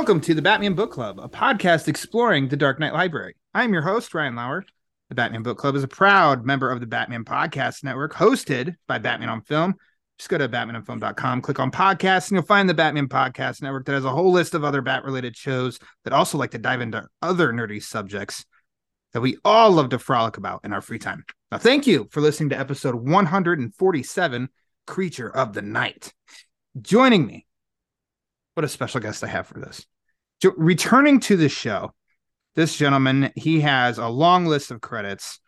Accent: American